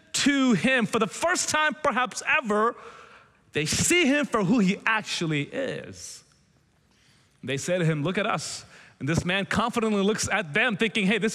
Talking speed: 175 wpm